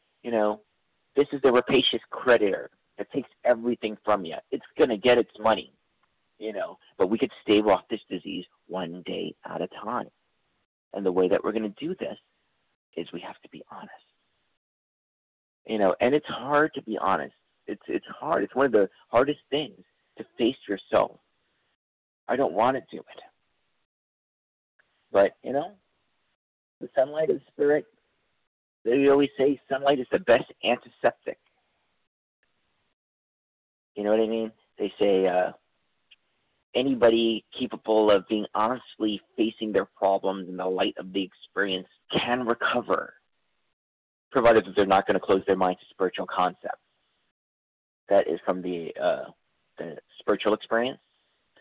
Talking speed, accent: 155 wpm, American